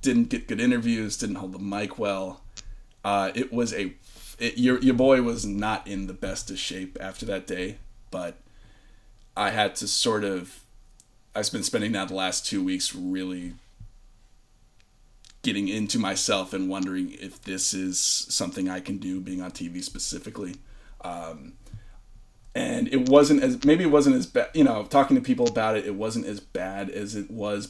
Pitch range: 95-125 Hz